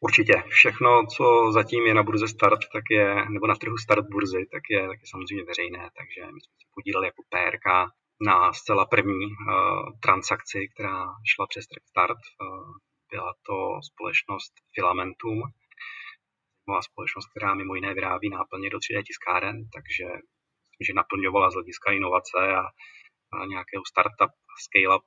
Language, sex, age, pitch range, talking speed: Czech, male, 40-59, 100-115 Hz, 150 wpm